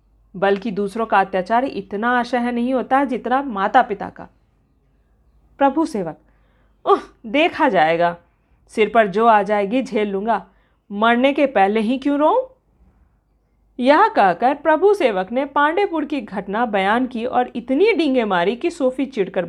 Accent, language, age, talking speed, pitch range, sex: native, Hindi, 40-59, 140 wpm, 210-280 Hz, female